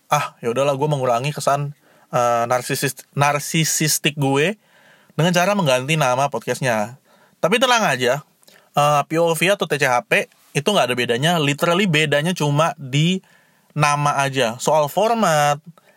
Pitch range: 130-175 Hz